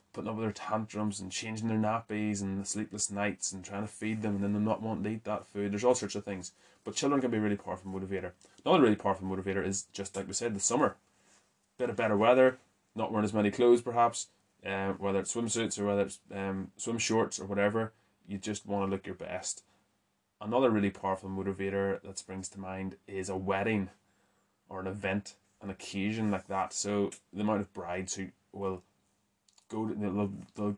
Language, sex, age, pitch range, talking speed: English, male, 20-39, 95-105 Hz, 210 wpm